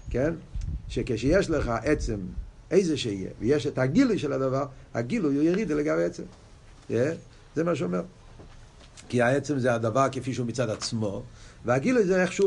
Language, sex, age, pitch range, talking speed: Hebrew, male, 50-69, 95-140 Hz, 145 wpm